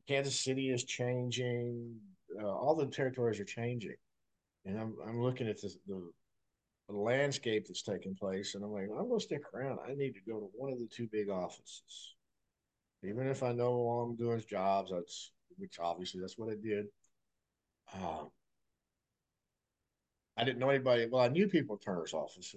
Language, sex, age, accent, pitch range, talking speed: English, male, 50-69, American, 95-125 Hz, 185 wpm